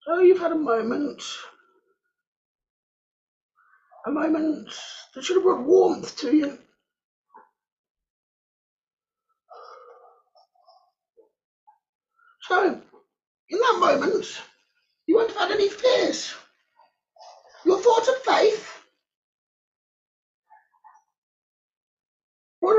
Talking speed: 75 wpm